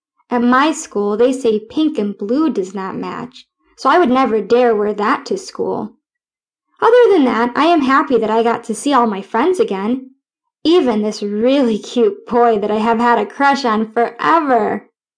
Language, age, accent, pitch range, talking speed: English, 10-29, American, 225-310 Hz, 190 wpm